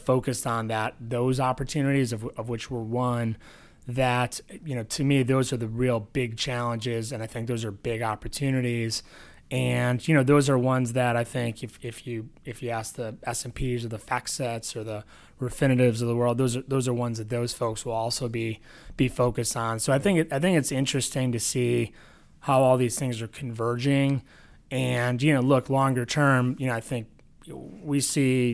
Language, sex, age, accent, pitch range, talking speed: English, male, 20-39, American, 115-130 Hz, 210 wpm